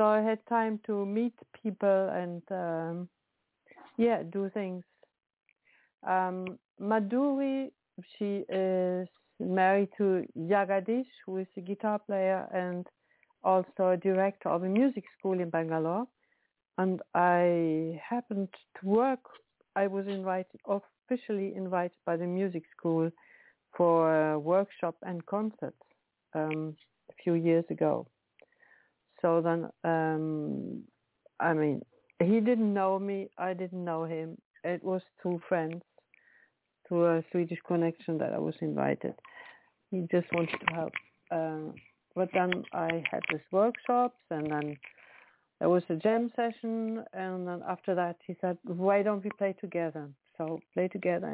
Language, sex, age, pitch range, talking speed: English, female, 60-79, 170-210 Hz, 135 wpm